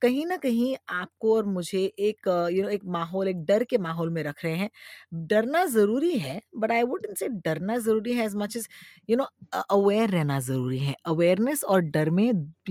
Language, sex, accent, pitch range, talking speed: Hindi, female, native, 160-220 Hz, 215 wpm